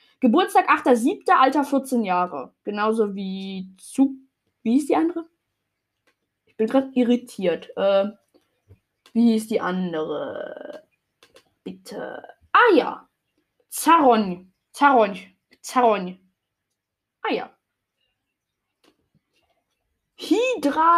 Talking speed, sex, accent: 85 wpm, female, German